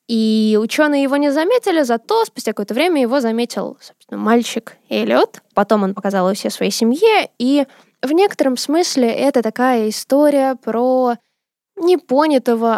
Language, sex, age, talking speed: Russian, female, 10-29, 140 wpm